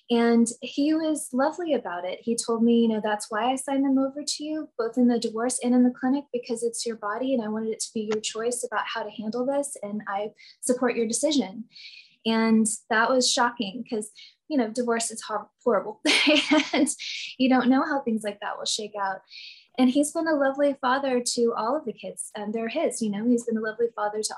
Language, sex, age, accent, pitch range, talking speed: English, female, 20-39, American, 215-260 Hz, 230 wpm